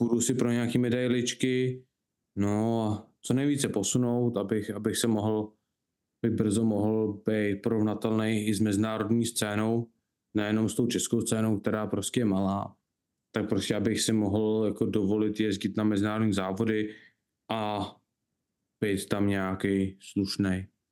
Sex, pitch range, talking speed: male, 110-130 Hz, 140 wpm